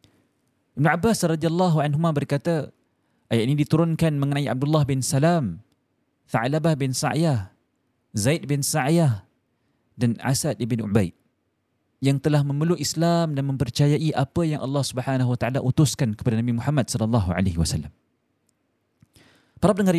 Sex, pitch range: male, 120-165 Hz